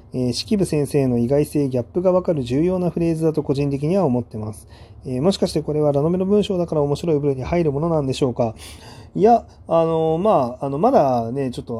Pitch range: 115-165 Hz